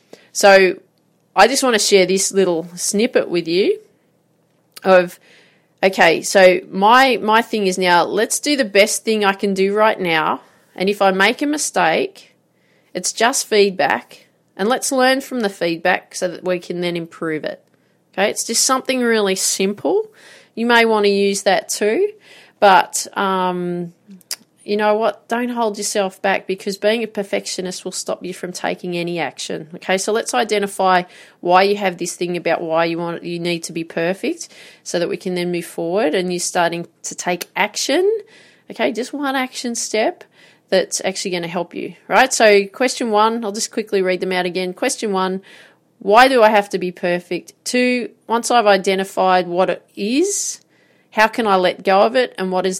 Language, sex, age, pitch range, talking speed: English, female, 30-49, 180-220 Hz, 185 wpm